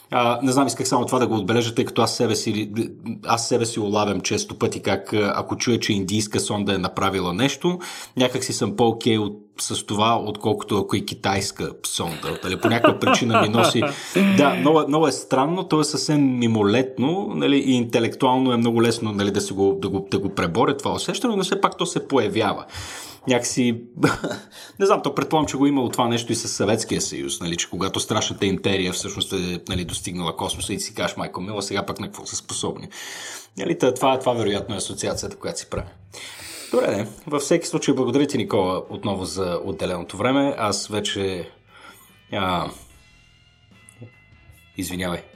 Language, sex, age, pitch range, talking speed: Bulgarian, male, 30-49, 100-130 Hz, 180 wpm